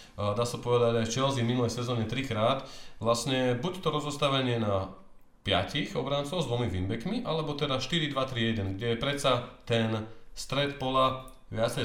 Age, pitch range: 30-49, 110-130 Hz